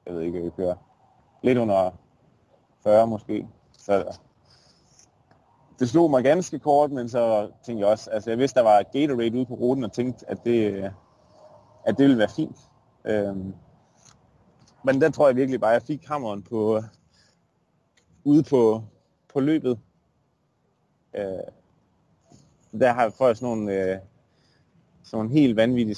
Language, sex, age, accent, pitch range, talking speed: Danish, male, 30-49, native, 100-130 Hz, 145 wpm